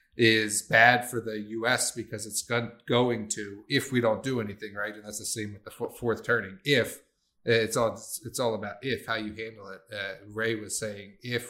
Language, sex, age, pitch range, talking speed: English, male, 30-49, 105-125 Hz, 205 wpm